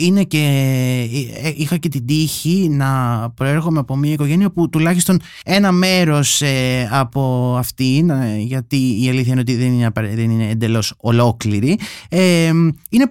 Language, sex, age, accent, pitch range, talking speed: Greek, male, 20-39, native, 120-170 Hz, 125 wpm